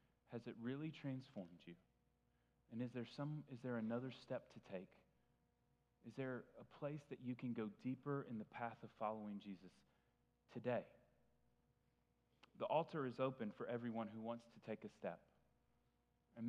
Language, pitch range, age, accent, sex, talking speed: English, 110-135 Hz, 30-49, American, male, 160 wpm